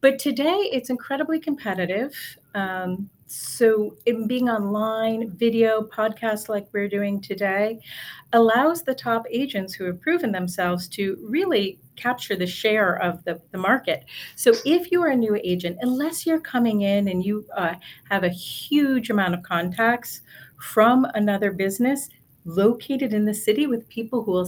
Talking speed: 155 wpm